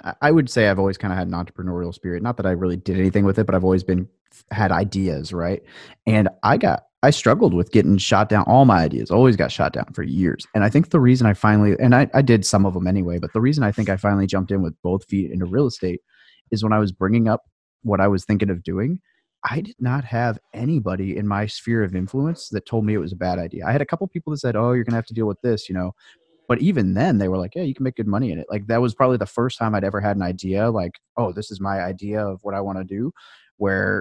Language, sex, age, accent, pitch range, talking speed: English, male, 30-49, American, 95-115 Hz, 285 wpm